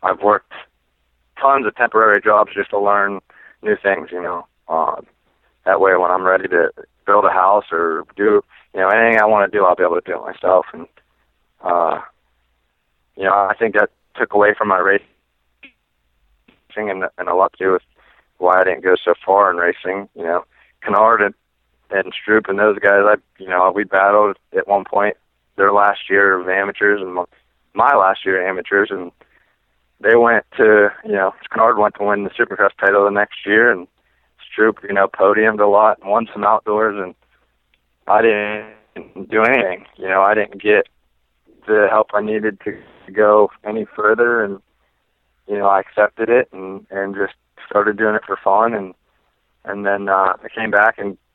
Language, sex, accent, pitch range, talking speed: English, male, American, 70-105 Hz, 185 wpm